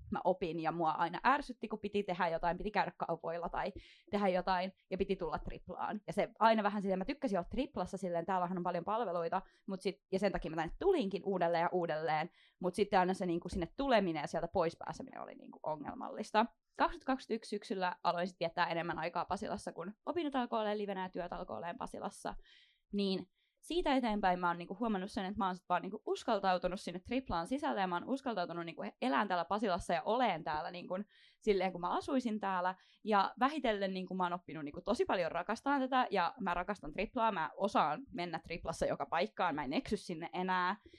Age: 20-39